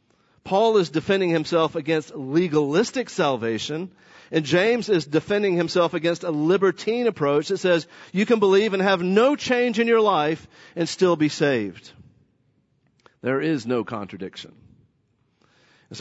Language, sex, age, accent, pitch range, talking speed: English, male, 50-69, American, 135-170 Hz, 140 wpm